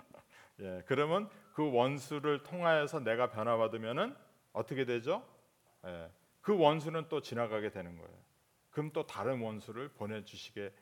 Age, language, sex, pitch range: 40-59, Korean, male, 115-165 Hz